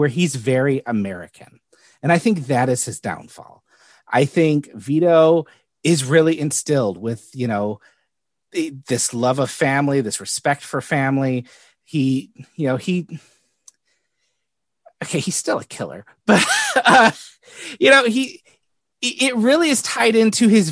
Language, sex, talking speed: English, male, 140 wpm